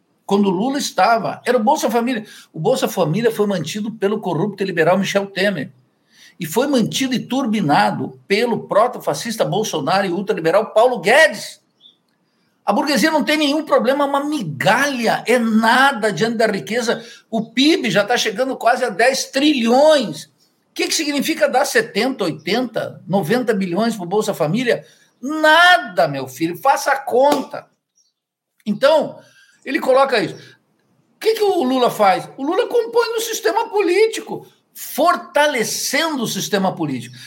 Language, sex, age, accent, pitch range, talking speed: Portuguese, male, 60-79, Brazilian, 195-275 Hz, 150 wpm